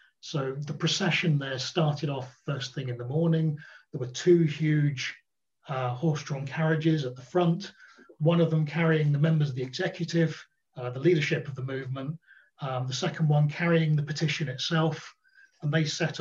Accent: British